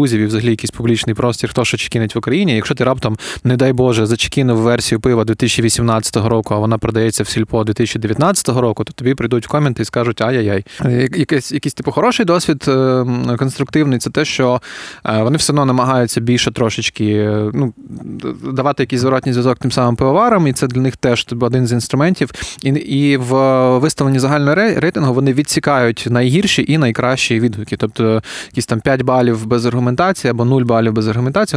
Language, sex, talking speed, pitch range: Ukrainian, male, 170 wpm, 115-135 Hz